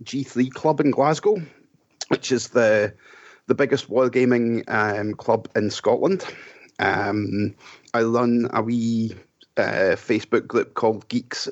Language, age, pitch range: English, 30-49, 115-140 Hz